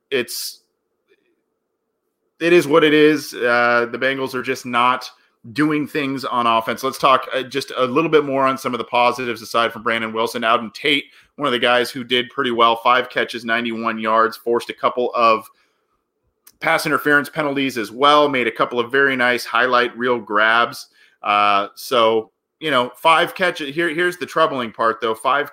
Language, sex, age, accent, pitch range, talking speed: English, male, 30-49, American, 110-145 Hz, 180 wpm